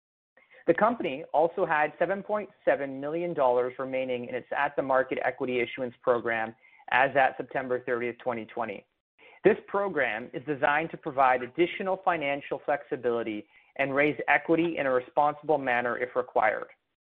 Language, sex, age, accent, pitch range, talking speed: English, male, 30-49, American, 130-170 Hz, 125 wpm